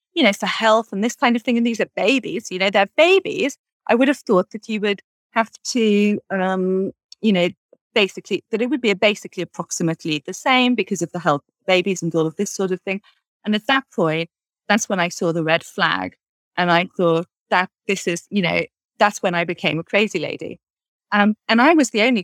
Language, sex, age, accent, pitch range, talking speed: English, female, 30-49, British, 180-225 Hz, 220 wpm